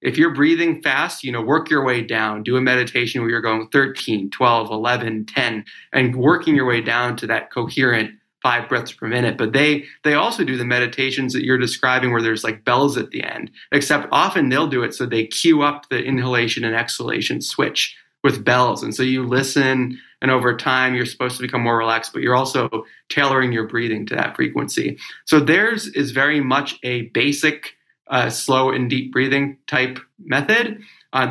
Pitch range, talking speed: 120-145 Hz, 195 wpm